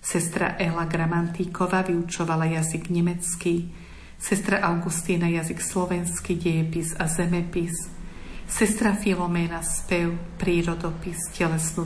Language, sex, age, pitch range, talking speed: Slovak, female, 50-69, 165-185 Hz, 90 wpm